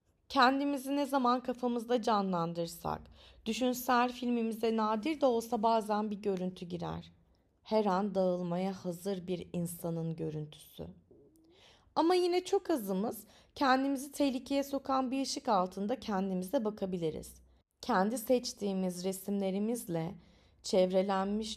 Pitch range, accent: 170-235 Hz, native